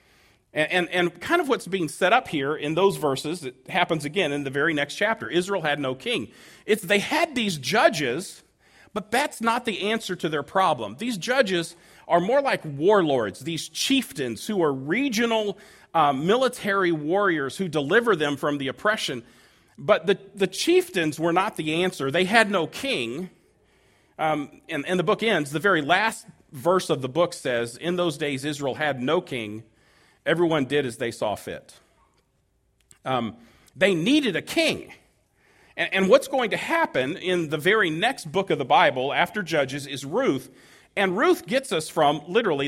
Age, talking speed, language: 40-59, 175 wpm, English